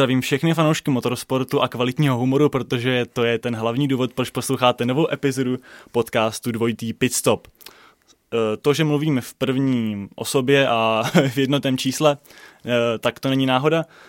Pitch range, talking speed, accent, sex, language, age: 115-135 Hz, 145 wpm, native, male, Czech, 20-39